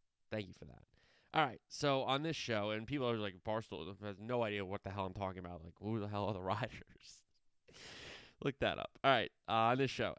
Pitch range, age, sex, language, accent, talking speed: 100-125 Hz, 20-39, male, English, American, 235 wpm